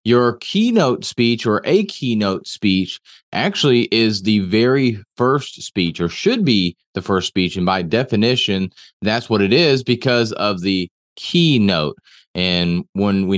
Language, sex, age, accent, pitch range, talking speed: English, male, 30-49, American, 105-130 Hz, 150 wpm